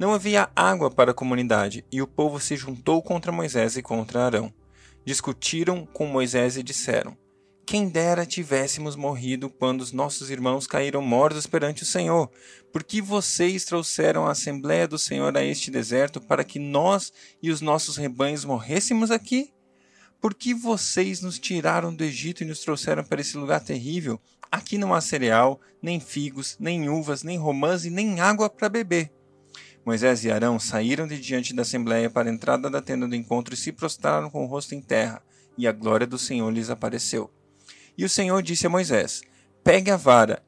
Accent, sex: Brazilian, male